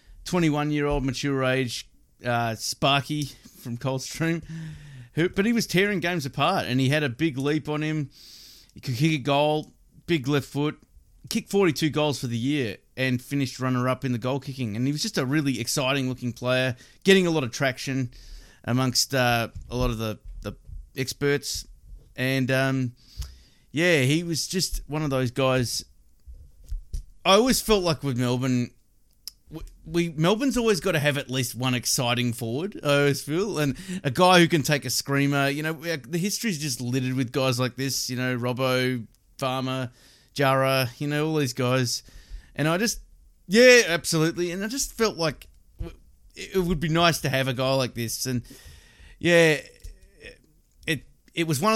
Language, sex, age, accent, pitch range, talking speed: English, male, 30-49, Australian, 125-155 Hz, 170 wpm